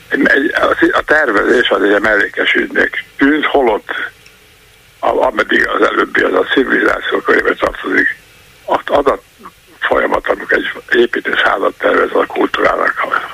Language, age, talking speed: Hungarian, 60-79, 115 wpm